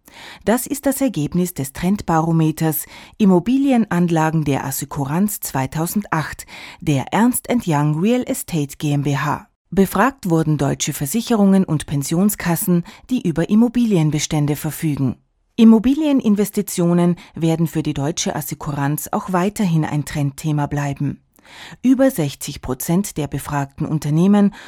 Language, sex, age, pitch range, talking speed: German, female, 30-49, 150-205 Hz, 105 wpm